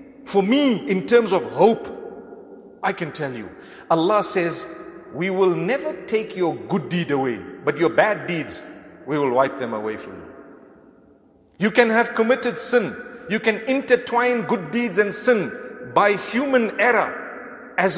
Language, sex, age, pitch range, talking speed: English, male, 50-69, 160-240 Hz, 155 wpm